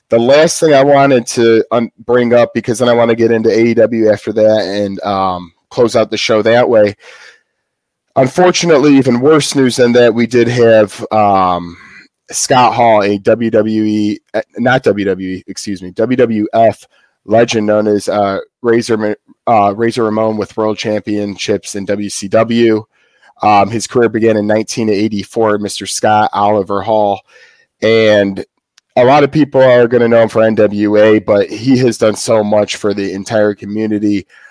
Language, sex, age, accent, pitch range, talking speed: English, male, 30-49, American, 100-120 Hz, 155 wpm